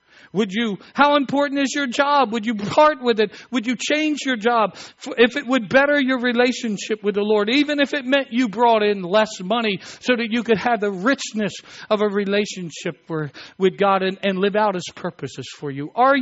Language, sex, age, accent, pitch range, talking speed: English, male, 60-79, American, 200-275 Hz, 205 wpm